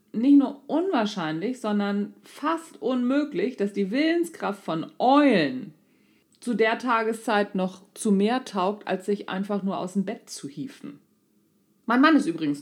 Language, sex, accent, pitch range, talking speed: German, female, German, 195-265 Hz, 145 wpm